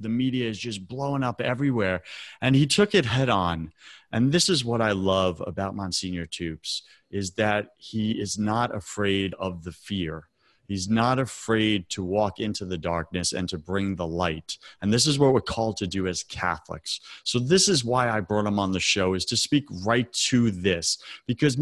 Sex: male